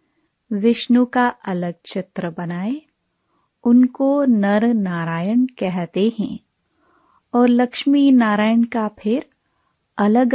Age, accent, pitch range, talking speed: 30-49, native, 190-245 Hz, 95 wpm